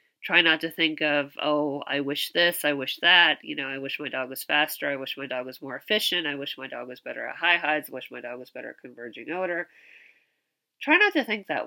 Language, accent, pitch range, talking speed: English, American, 140-170 Hz, 255 wpm